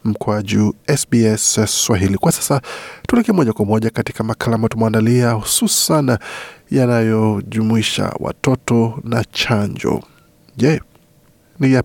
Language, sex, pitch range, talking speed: Swahili, male, 110-130 Hz, 100 wpm